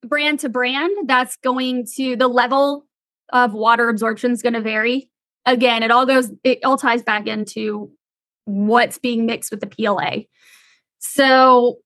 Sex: female